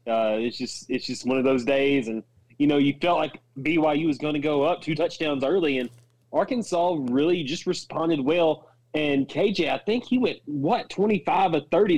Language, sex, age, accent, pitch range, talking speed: English, male, 30-49, American, 125-165 Hz, 200 wpm